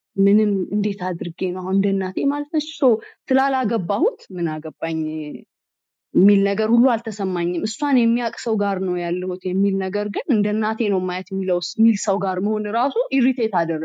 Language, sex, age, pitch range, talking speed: Amharic, female, 20-39, 170-225 Hz, 75 wpm